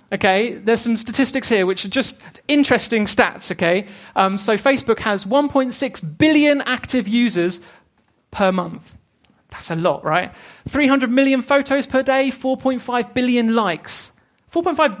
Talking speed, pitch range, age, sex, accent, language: 135 wpm, 180-240 Hz, 30-49, male, British, English